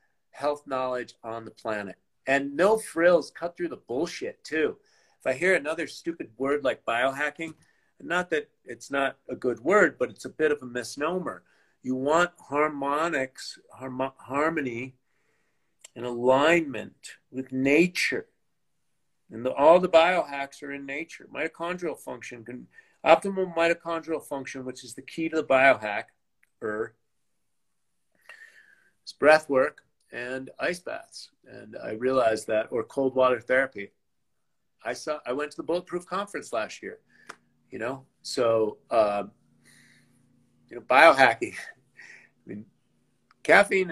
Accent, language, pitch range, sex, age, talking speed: American, English, 125-165 Hz, male, 50-69, 135 wpm